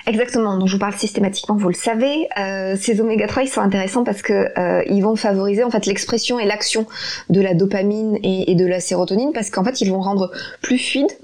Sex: female